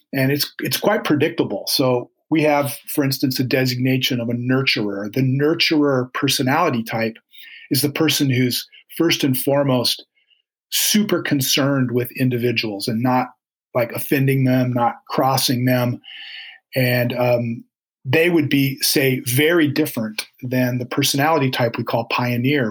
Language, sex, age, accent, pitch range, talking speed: English, male, 40-59, American, 125-145 Hz, 140 wpm